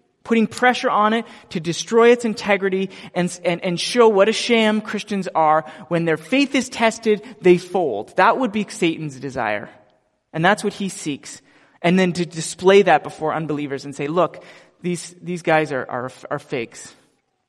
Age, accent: 30-49, American